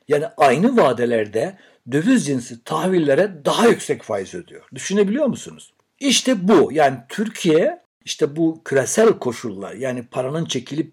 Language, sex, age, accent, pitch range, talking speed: Turkish, male, 60-79, native, 120-170 Hz, 125 wpm